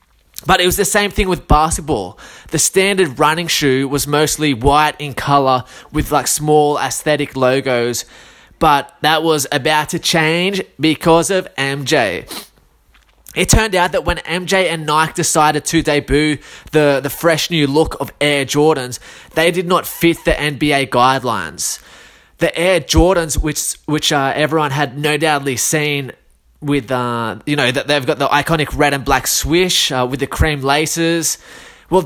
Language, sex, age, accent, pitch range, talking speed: English, male, 20-39, Australian, 140-165 Hz, 165 wpm